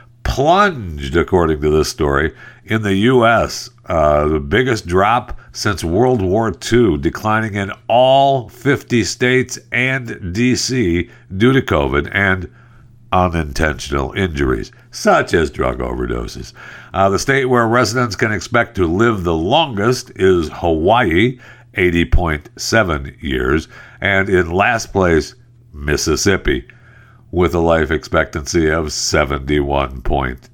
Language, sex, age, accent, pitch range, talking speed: English, male, 60-79, American, 80-120 Hz, 120 wpm